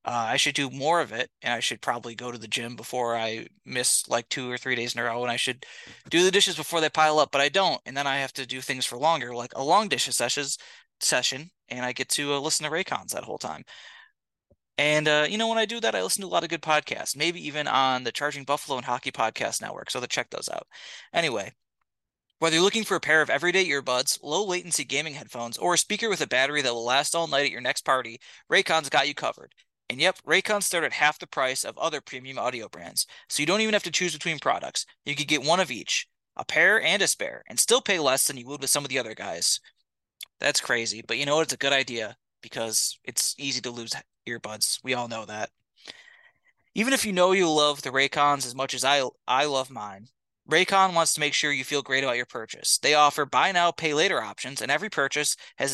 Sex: male